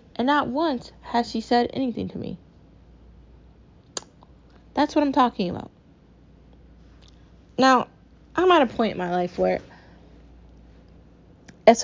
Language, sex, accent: English, female, American